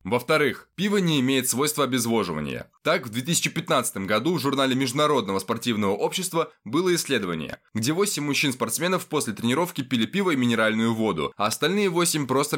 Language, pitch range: Russian, 125-165 Hz